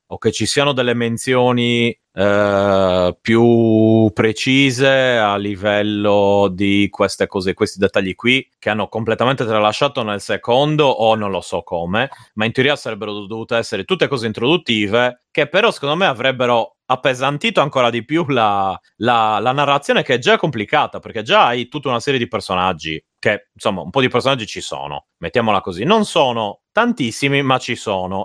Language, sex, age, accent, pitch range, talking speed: Italian, male, 30-49, native, 100-130 Hz, 165 wpm